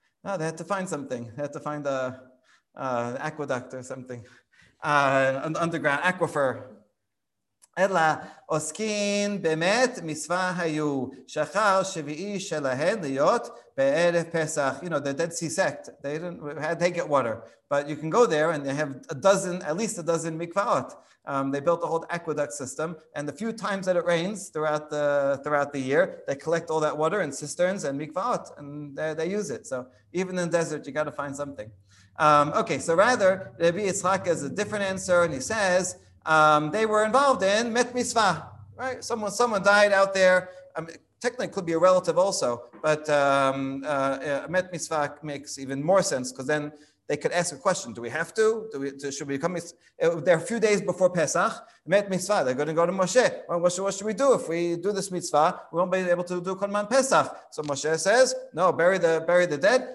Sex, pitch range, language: male, 145-190 Hz, English